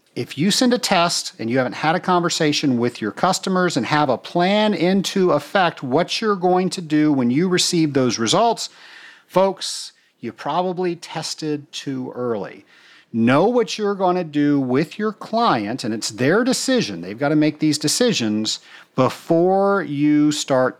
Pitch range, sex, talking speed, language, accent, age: 125-180 Hz, male, 160 wpm, English, American, 50-69